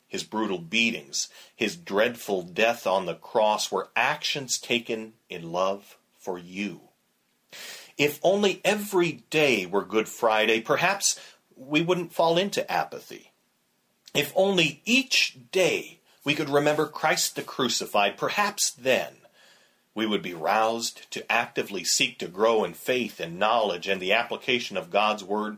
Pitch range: 105-150 Hz